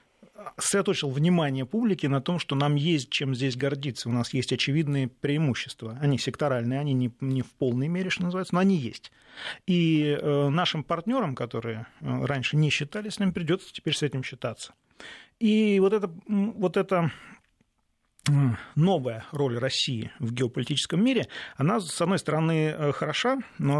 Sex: male